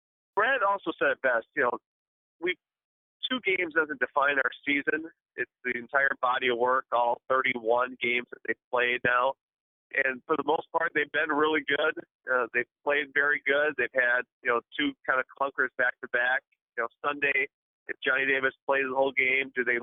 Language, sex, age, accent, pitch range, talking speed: English, male, 40-59, American, 130-200 Hz, 185 wpm